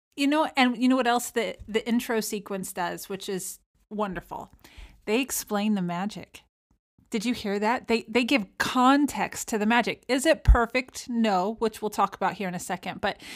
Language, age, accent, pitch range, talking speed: English, 30-49, American, 200-255 Hz, 195 wpm